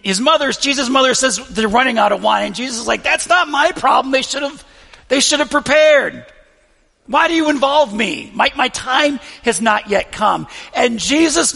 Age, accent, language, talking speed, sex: 40-59, American, English, 195 wpm, male